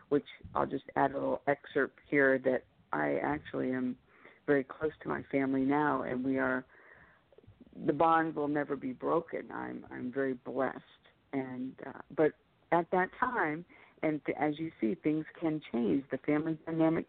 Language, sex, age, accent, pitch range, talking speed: English, female, 50-69, American, 130-170 Hz, 170 wpm